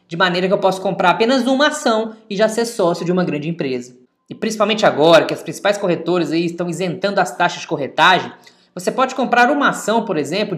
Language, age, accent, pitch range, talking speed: Portuguese, 20-39, Brazilian, 185-245 Hz, 215 wpm